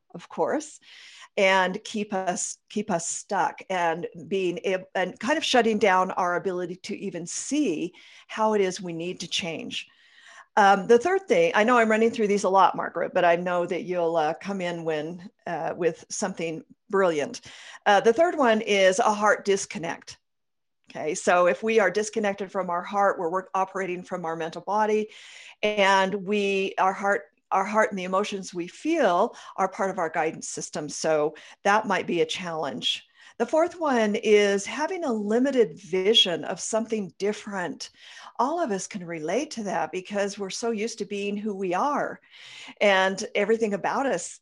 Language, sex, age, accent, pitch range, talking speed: English, female, 50-69, American, 180-225 Hz, 175 wpm